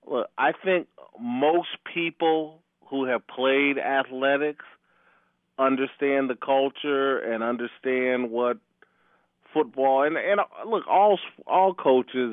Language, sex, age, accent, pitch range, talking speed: English, male, 40-59, American, 115-130 Hz, 110 wpm